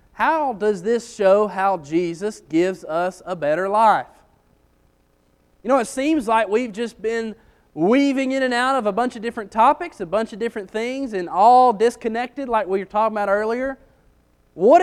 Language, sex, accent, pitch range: English, male, American, 140-225 Hz